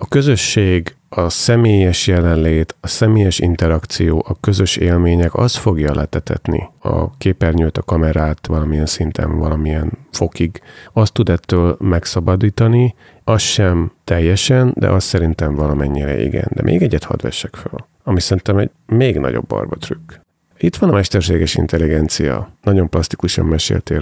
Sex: male